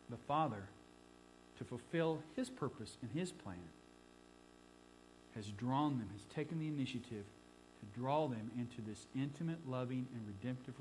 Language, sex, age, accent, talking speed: English, male, 50-69, American, 140 wpm